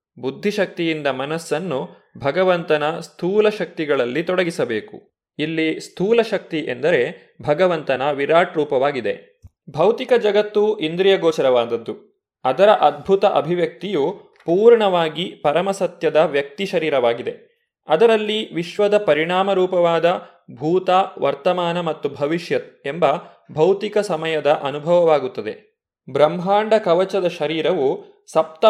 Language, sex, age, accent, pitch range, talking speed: Kannada, male, 20-39, native, 160-215 Hz, 80 wpm